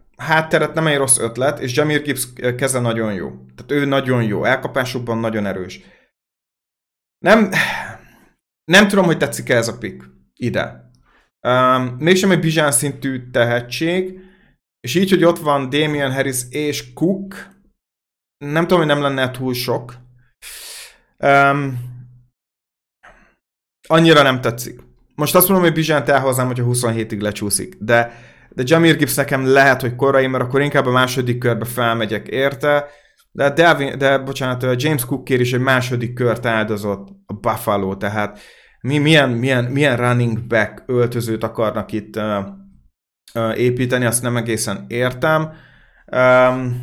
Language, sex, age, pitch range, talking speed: Hungarian, male, 30-49, 115-145 Hz, 140 wpm